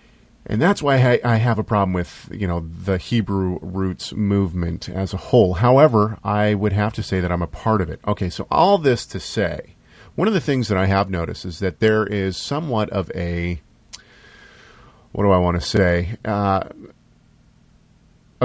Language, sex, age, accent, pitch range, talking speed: English, male, 40-59, American, 95-125 Hz, 190 wpm